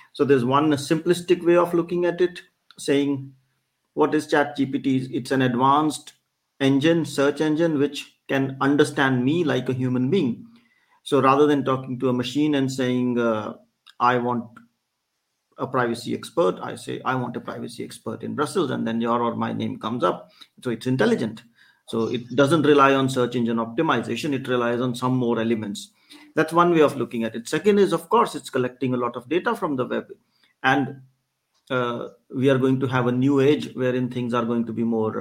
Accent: Indian